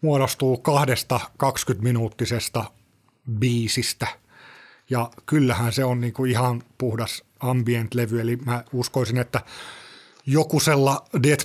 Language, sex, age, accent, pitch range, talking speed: Finnish, male, 30-49, native, 120-135 Hz, 95 wpm